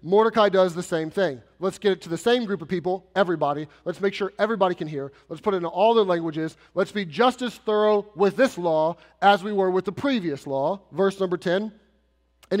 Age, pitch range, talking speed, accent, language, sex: 30-49, 180-215 Hz, 225 wpm, American, English, male